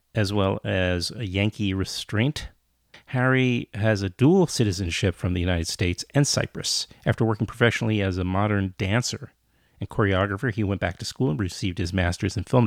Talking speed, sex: 175 wpm, male